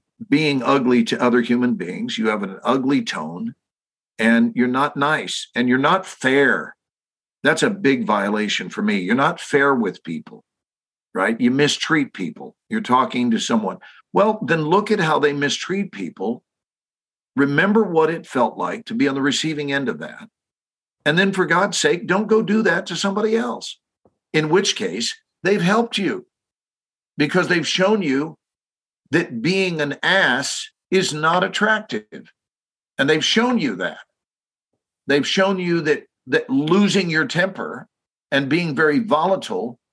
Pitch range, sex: 145-210 Hz, male